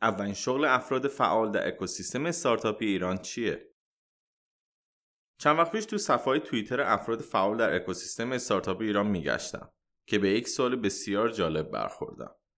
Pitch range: 100-140 Hz